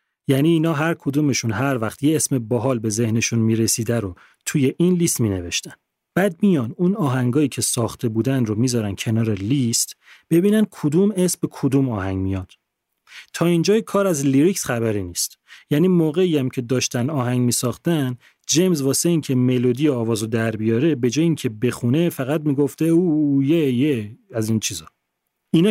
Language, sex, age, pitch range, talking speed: Persian, male, 30-49, 115-165 Hz, 165 wpm